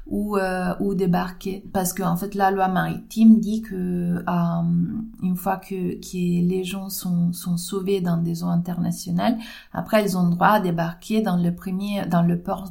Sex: female